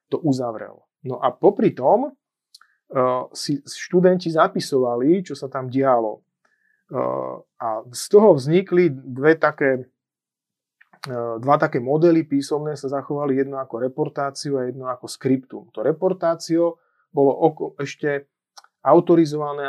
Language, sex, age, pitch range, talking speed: Slovak, male, 30-49, 130-155 Hz, 125 wpm